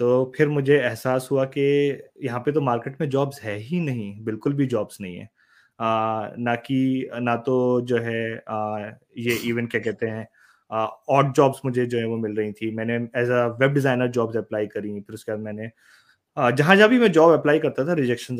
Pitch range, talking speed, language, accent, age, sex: 115-140 Hz, 210 wpm, Hindi, native, 20-39, male